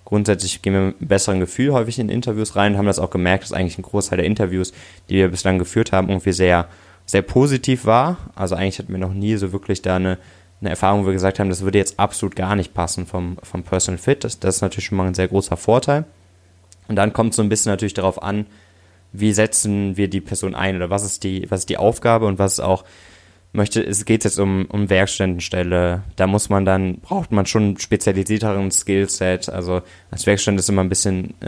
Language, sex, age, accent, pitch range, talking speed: German, male, 20-39, German, 90-105 Hz, 230 wpm